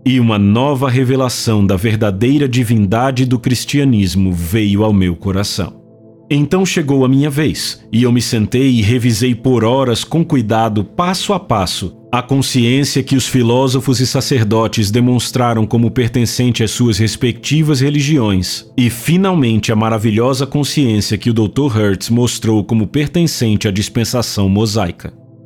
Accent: Brazilian